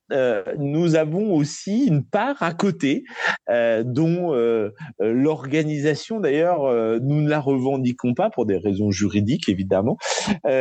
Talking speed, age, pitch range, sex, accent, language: 140 wpm, 30-49, 120-165 Hz, male, French, French